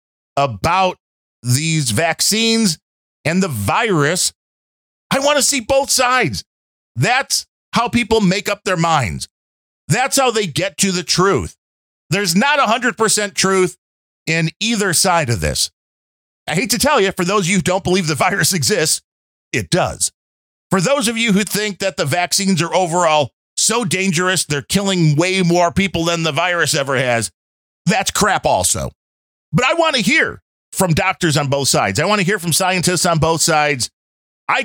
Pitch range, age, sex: 125-195 Hz, 40-59, male